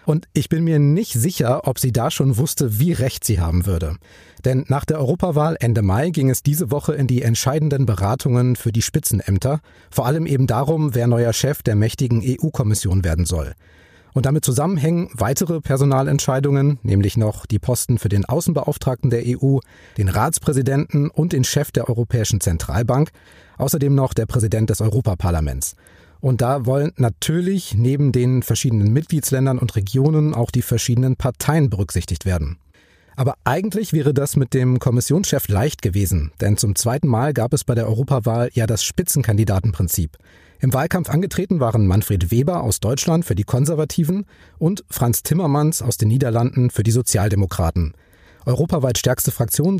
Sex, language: male, German